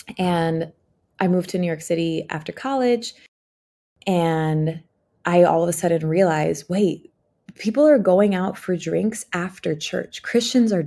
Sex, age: female, 20-39